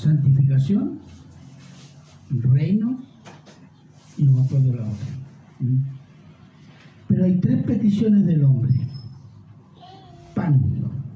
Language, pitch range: Spanish, 135-180 Hz